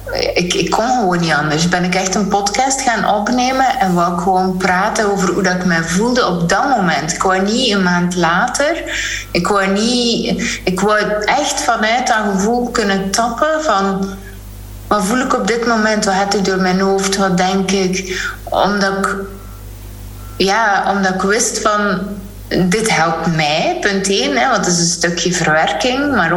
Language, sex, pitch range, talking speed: Dutch, female, 180-220 Hz, 170 wpm